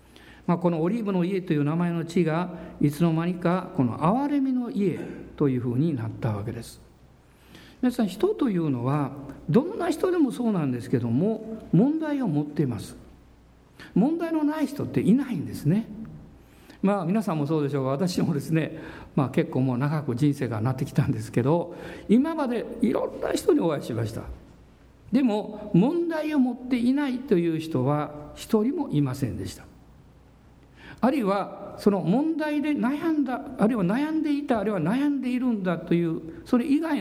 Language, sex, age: Japanese, male, 50-69